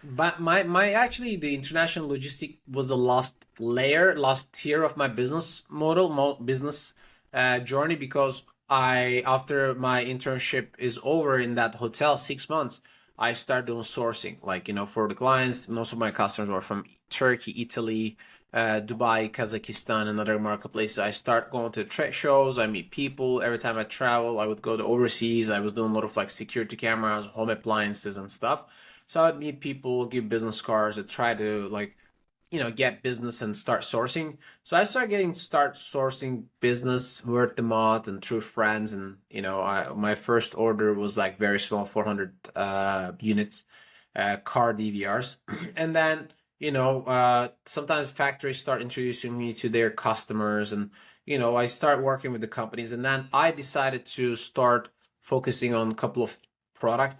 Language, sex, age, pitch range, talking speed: English, male, 20-39, 110-135 Hz, 175 wpm